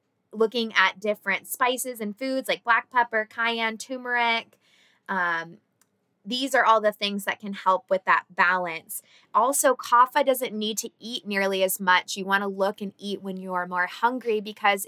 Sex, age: female, 20-39